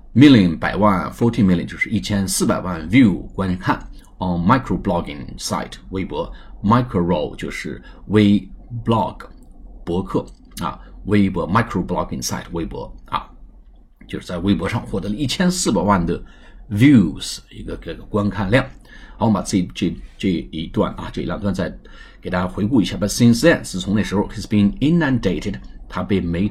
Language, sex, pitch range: Chinese, male, 90-110 Hz